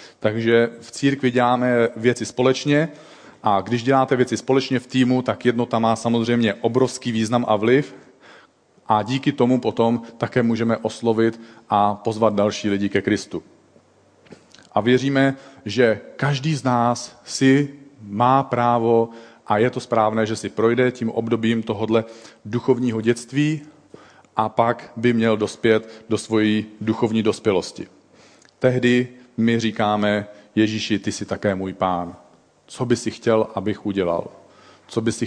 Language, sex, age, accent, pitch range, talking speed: Czech, male, 40-59, native, 105-125 Hz, 140 wpm